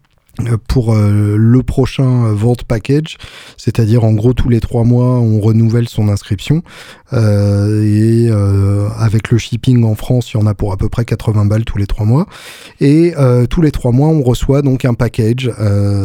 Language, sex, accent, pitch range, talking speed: French, male, French, 105-130 Hz, 190 wpm